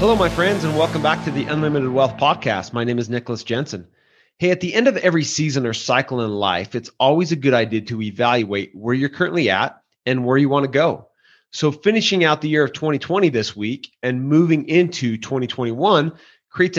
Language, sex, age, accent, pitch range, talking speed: English, male, 30-49, American, 125-170 Hz, 205 wpm